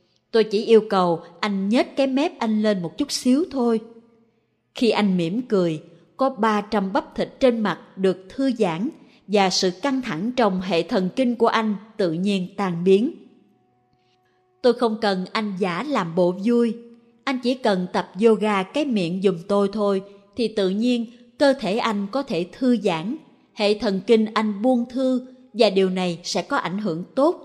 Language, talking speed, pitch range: Vietnamese, 180 wpm, 190-250 Hz